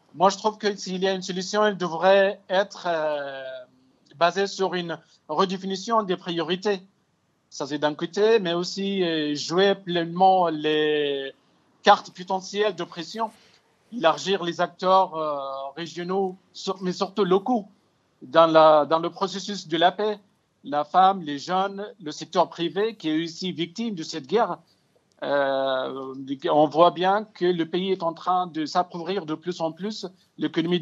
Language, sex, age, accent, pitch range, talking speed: French, male, 50-69, French, 160-195 Hz, 155 wpm